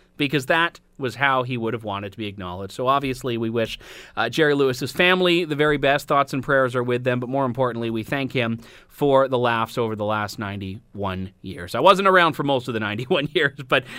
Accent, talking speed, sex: American, 225 wpm, male